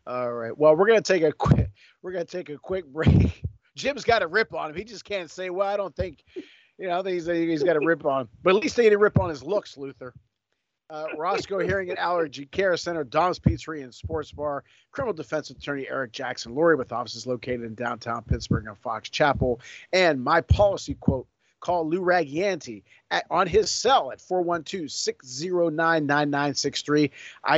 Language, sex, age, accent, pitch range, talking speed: English, male, 50-69, American, 125-160 Hz, 195 wpm